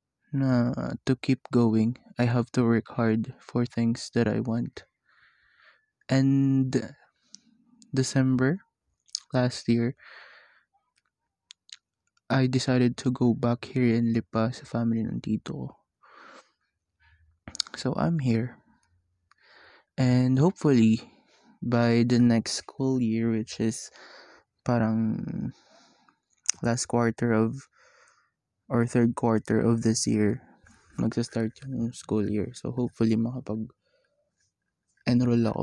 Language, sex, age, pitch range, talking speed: Filipino, male, 20-39, 115-130 Hz, 100 wpm